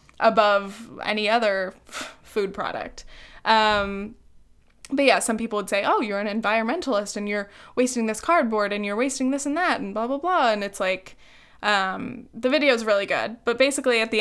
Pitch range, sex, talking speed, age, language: 205-250 Hz, female, 185 wpm, 20-39, English